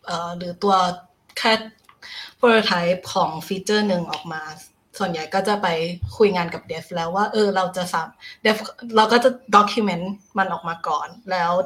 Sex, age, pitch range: female, 20-39, 180-215 Hz